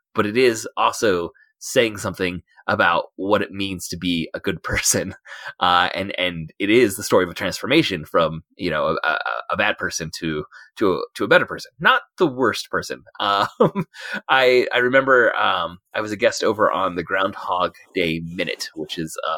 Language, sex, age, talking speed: English, male, 30-49, 190 wpm